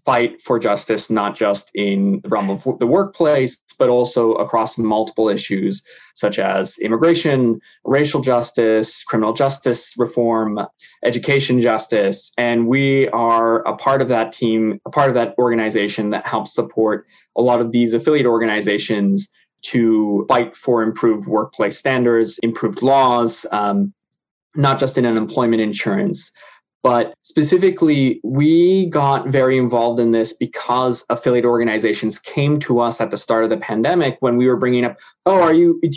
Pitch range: 115-135 Hz